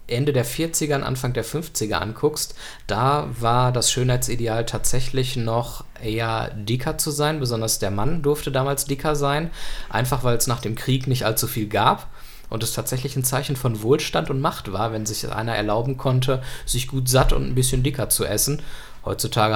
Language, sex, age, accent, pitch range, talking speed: German, male, 20-39, German, 110-135 Hz, 185 wpm